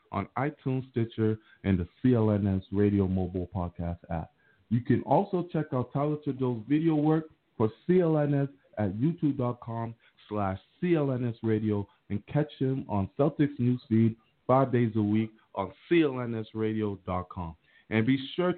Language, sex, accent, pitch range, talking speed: English, male, American, 105-140 Hz, 130 wpm